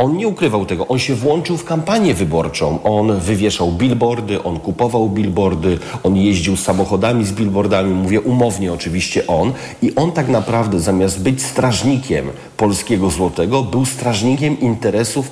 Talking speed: 145 wpm